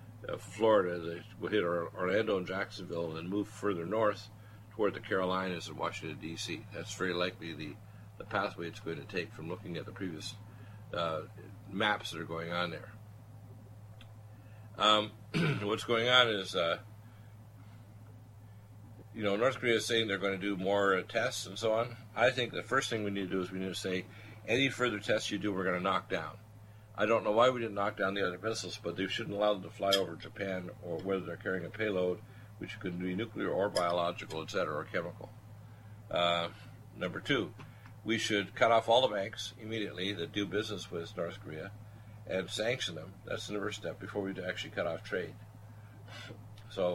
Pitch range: 95-110 Hz